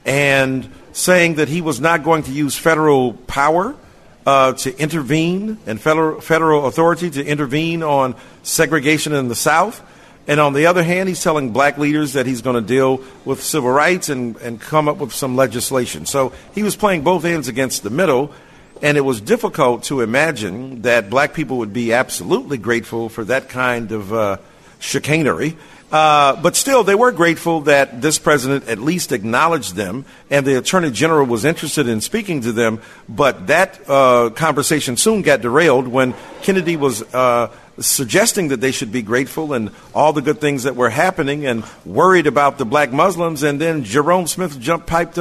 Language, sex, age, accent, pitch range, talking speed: English, male, 50-69, American, 130-165 Hz, 180 wpm